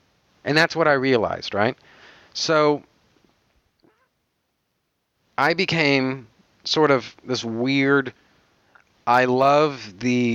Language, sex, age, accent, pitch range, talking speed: English, male, 40-59, American, 115-140 Hz, 95 wpm